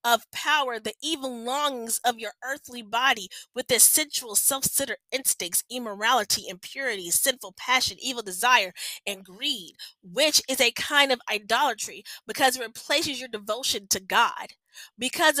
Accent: American